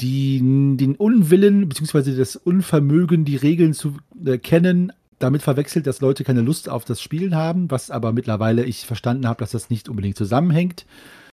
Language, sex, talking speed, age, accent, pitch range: German, male, 165 wpm, 40-59, German, 120-155 Hz